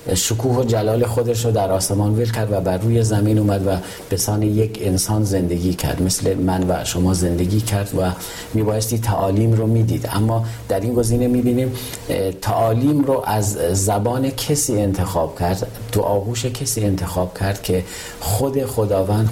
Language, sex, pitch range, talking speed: Persian, male, 100-120 Hz, 160 wpm